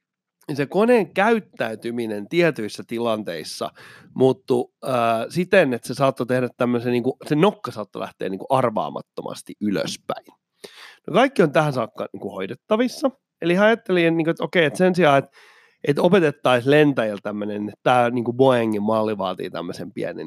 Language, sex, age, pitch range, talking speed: Finnish, male, 30-49, 115-185 Hz, 150 wpm